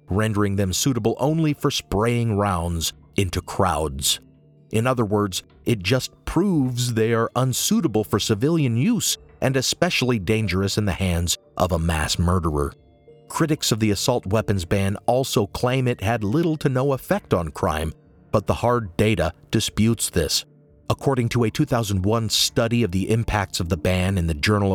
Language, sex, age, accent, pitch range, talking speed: English, male, 40-59, American, 95-125 Hz, 160 wpm